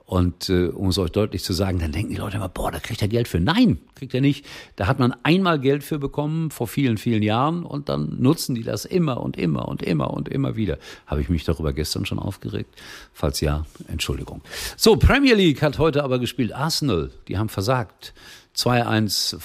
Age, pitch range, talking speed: 50-69, 90-130 Hz, 210 wpm